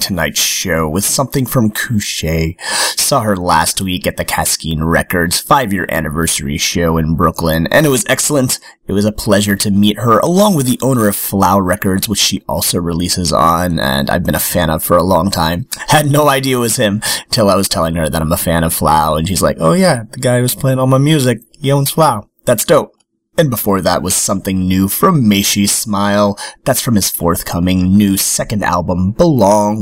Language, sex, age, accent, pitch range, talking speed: English, male, 30-49, American, 85-130 Hz, 205 wpm